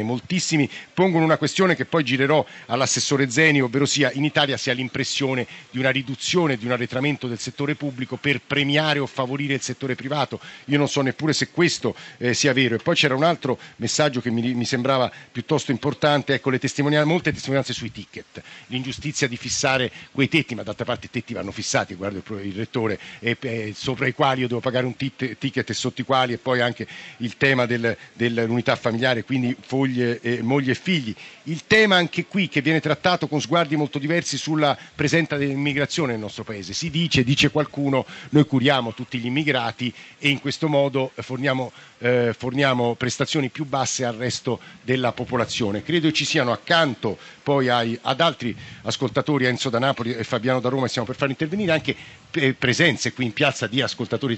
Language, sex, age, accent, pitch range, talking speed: Italian, male, 50-69, native, 120-145 Hz, 190 wpm